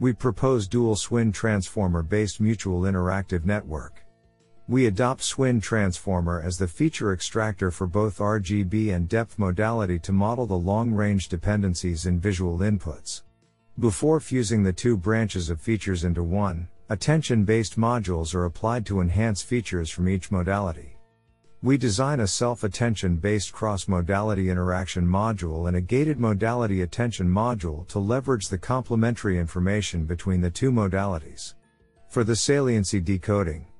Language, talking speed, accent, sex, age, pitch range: English, 140 wpm, American, male, 50-69, 90-115 Hz